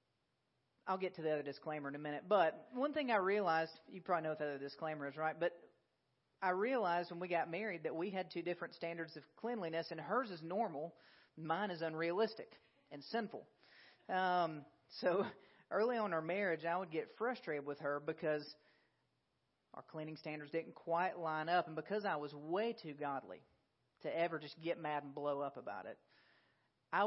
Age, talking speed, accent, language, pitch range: 40-59, 190 wpm, American, English, 150-180 Hz